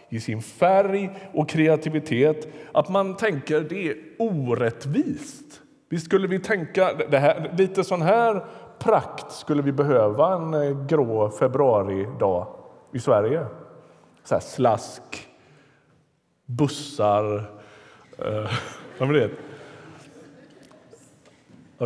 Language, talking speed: Swedish, 110 wpm